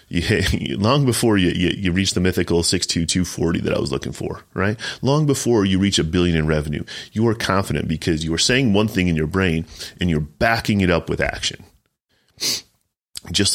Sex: male